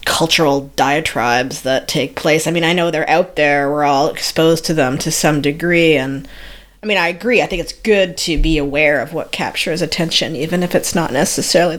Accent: American